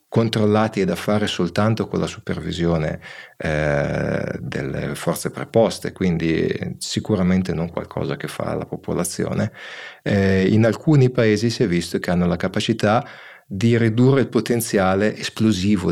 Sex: male